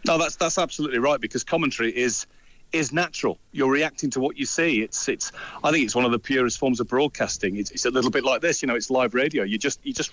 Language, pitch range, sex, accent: English, 110-150 Hz, male, British